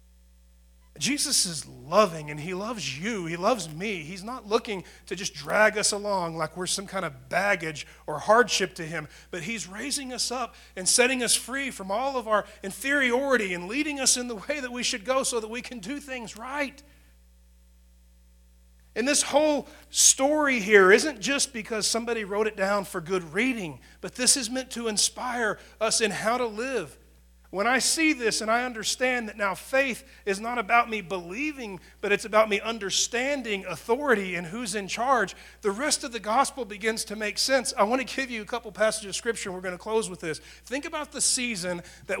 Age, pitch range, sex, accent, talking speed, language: 40-59, 175-240 Hz, male, American, 200 wpm, English